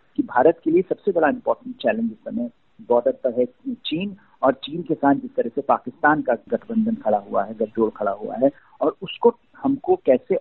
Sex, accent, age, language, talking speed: male, native, 50-69, Hindi, 200 wpm